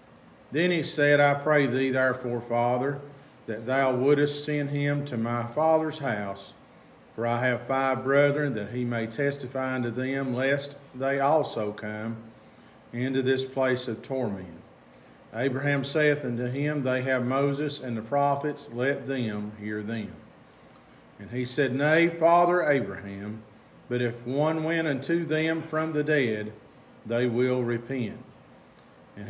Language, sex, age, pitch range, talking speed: English, male, 50-69, 110-140 Hz, 145 wpm